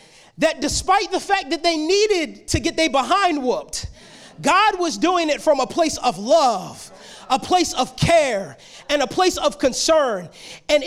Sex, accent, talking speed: male, American, 170 wpm